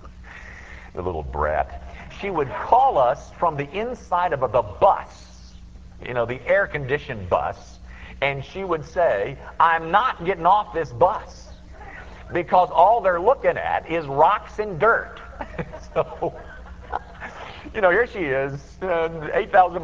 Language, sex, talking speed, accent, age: English, male, 135 wpm, American, 50-69